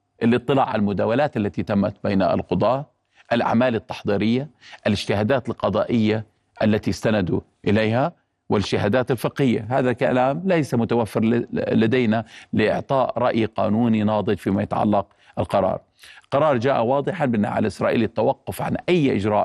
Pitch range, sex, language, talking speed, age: 110-145 Hz, male, Arabic, 115 wpm, 50-69